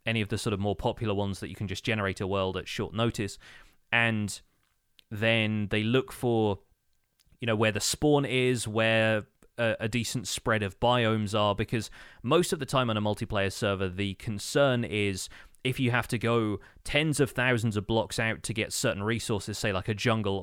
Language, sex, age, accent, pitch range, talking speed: English, male, 20-39, British, 100-120 Hz, 195 wpm